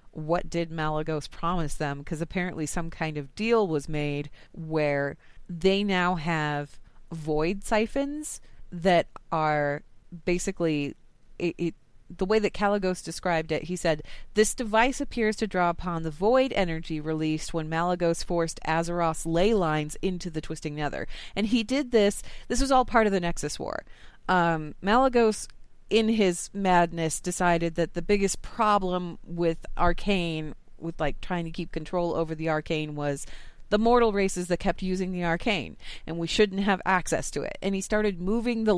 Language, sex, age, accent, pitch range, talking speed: English, female, 30-49, American, 160-195 Hz, 165 wpm